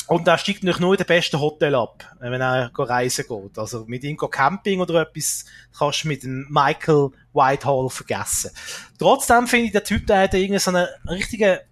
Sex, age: male, 30-49